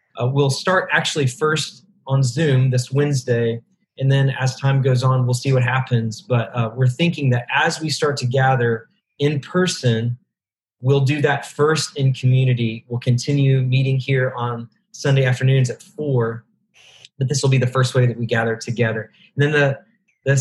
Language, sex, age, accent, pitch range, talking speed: English, male, 30-49, American, 125-145 Hz, 180 wpm